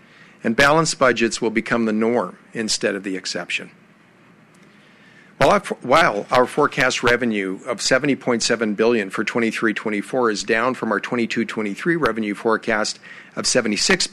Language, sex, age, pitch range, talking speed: English, male, 50-69, 110-145 Hz, 125 wpm